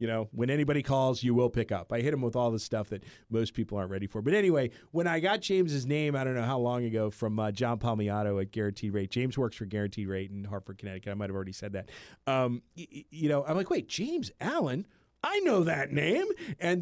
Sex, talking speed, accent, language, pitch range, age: male, 255 wpm, American, English, 115-180 Hz, 40-59